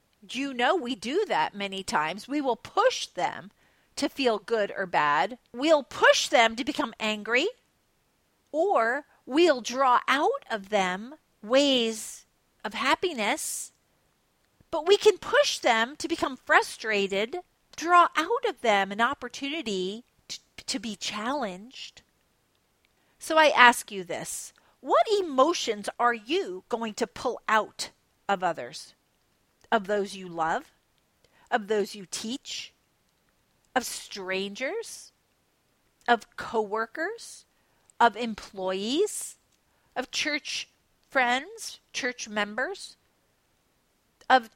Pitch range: 210-295 Hz